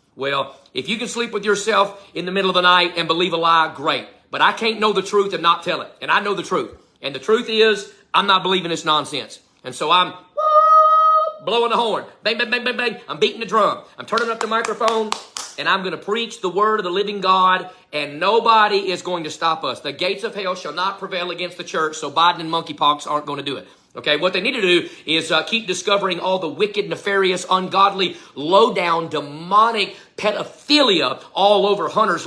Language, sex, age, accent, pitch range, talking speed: English, male, 40-59, American, 170-220 Hz, 225 wpm